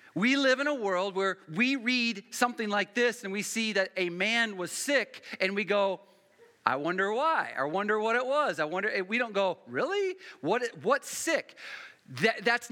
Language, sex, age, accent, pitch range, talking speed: English, male, 40-59, American, 190-235 Hz, 195 wpm